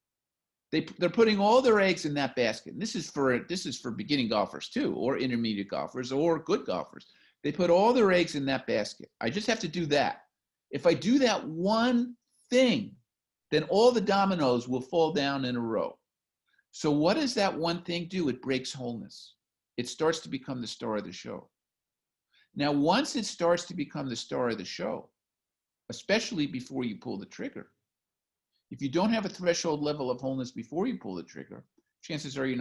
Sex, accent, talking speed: male, American, 200 wpm